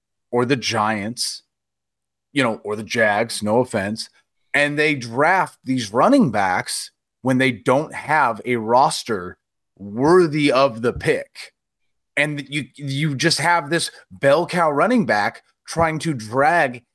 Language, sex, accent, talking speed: English, male, American, 140 wpm